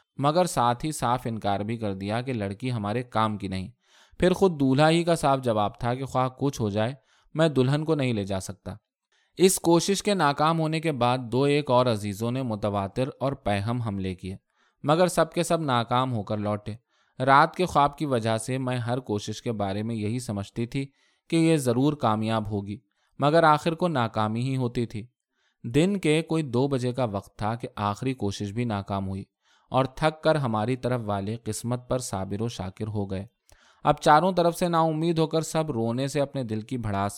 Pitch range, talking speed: 110-150 Hz, 205 wpm